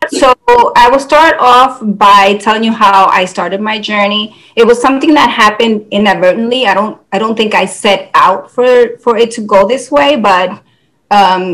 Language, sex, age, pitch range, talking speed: English, female, 30-49, 180-220 Hz, 185 wpm